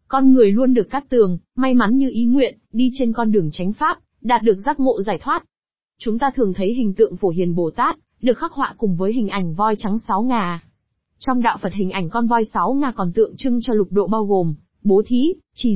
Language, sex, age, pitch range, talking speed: Vietnamese, female, 20-39, 190-245 Hz, 245 wpm